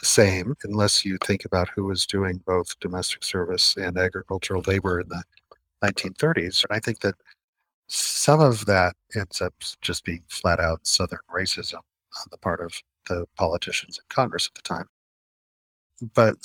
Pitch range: 85-100 Hz